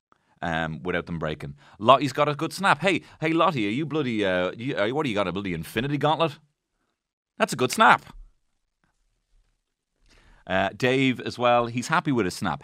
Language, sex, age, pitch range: English, male, 30-49, 105-145 Hz